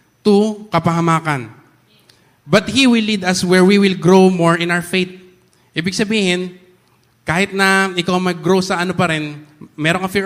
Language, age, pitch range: Filipino, 20-39, 155-180 Hz